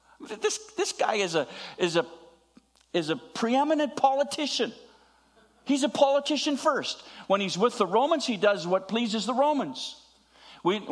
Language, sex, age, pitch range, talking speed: English, male, 50-69, 180-245 Hz, 150 wpm